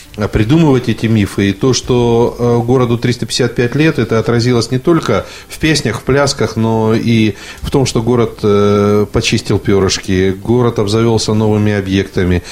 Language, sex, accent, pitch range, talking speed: Russian, male, native, 105-130 Hz, 140 wpm